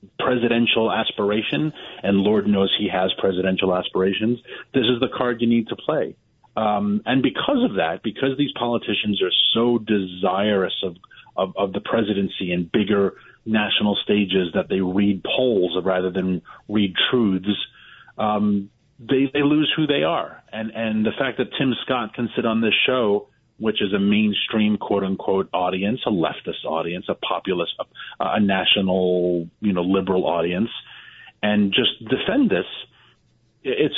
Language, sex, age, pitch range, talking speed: English, male, 40-59, 100-125 Hz, 155 wpm